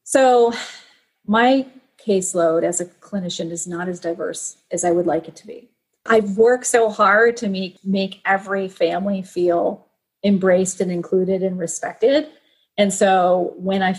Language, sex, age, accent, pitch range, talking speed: English, female, 30-49, American, 185-240 Hz, 155 wpm